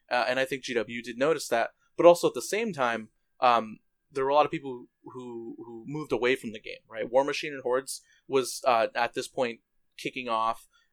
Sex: male